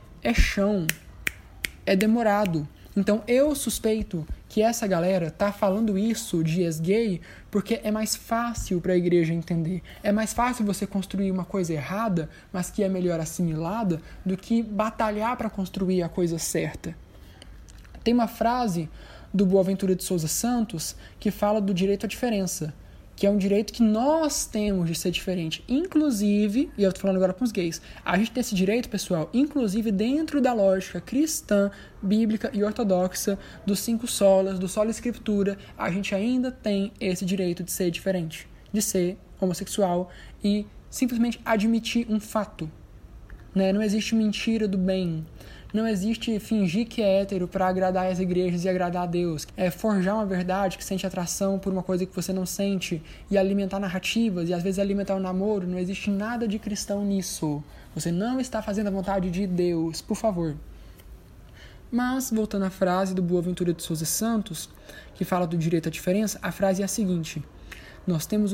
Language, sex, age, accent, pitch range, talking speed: Portuguese, male, 20-39, Brazilian, 180-215 Hz, 170 wpm